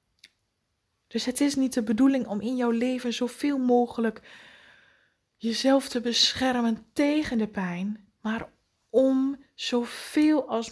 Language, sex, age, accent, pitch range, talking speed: Dutch, female, 20-39, Dutch, 225-265 Hz, 125 wpm